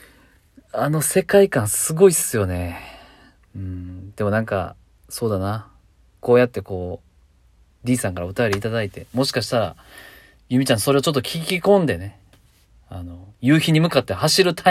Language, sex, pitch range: Japanese, male, 95-140 Hz